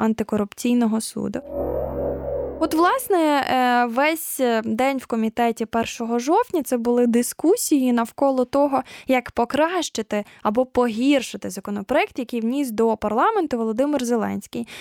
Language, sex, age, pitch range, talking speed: Ukrainian, female, 10-29, 225-280 Hz, 105 wpm